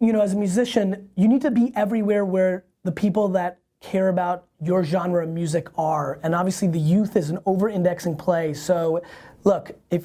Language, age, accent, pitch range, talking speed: English, 30-49, American, 170-205 Hz, 190 wpm